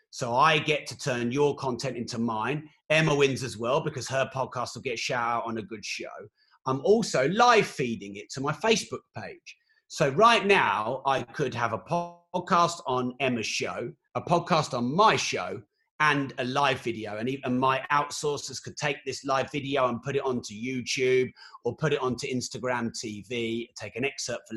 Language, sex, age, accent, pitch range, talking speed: English, male, 30-49, British, 125-155 Hz, 190 wpm